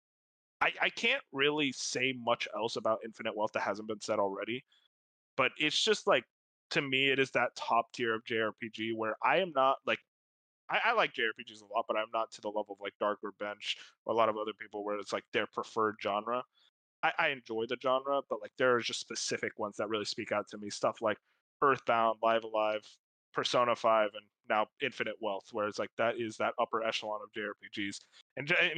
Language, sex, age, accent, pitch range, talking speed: English, male, 20-39, American, 110-135 Hz, 215 wpm